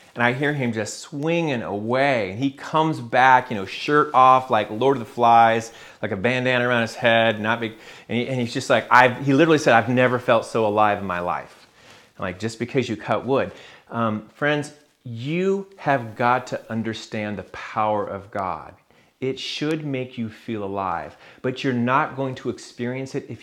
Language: English